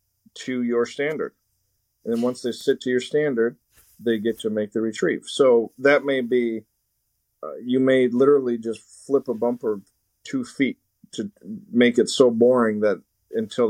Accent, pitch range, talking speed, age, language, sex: American, 110-135 Hz, 165 wpm, 50-69, English, male